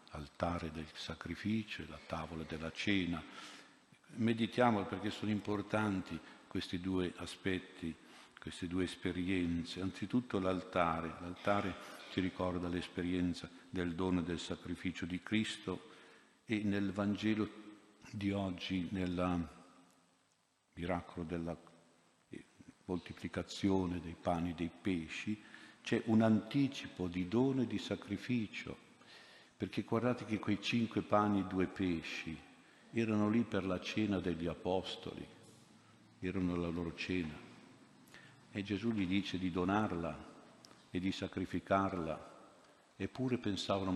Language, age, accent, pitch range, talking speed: Italian, 50-69, native, 90-105 Hz, 115 wpm